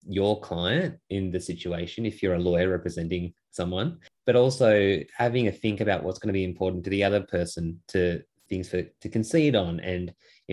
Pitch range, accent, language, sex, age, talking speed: 90-105 Hz, Australian, English, male, 20-39, 195 wpm